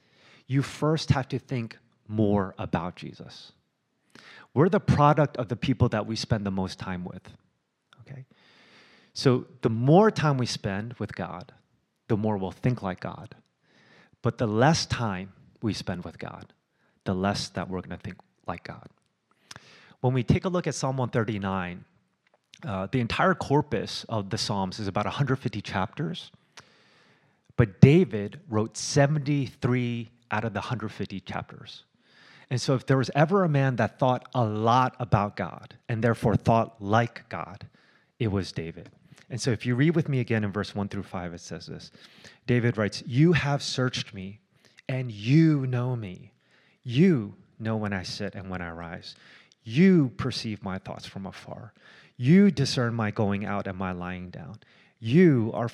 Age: 30-49